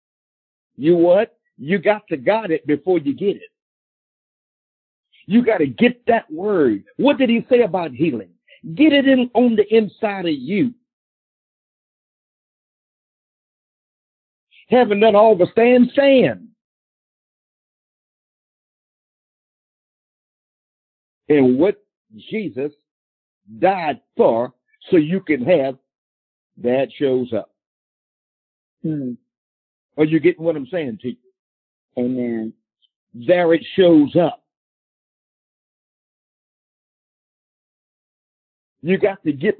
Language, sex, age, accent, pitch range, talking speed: English, male, 50-69, American, 145-230 Hz, 105 wpm